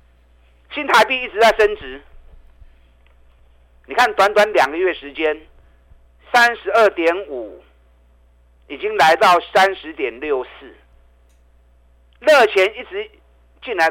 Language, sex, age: Chinese, male, 50-69